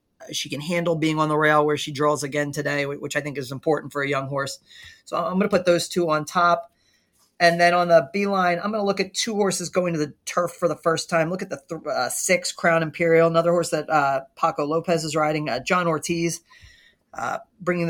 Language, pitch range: English, 150-175 Hz